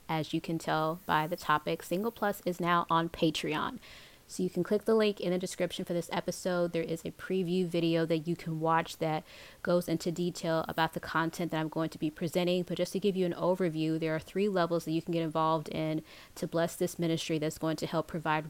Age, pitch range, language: 20-39, 160-180 Hz, English